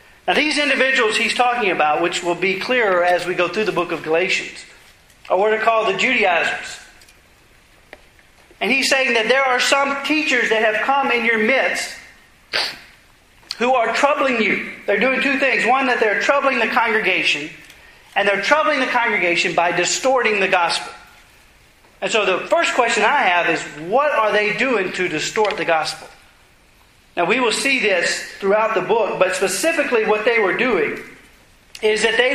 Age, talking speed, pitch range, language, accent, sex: 40-59, 175 wpm, 190-255 Hz, English, American, male